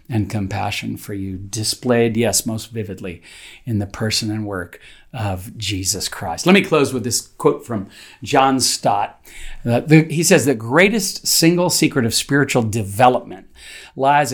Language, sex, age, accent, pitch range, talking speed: English, male, 50-69, American, 105-140 Hz, 150 wpm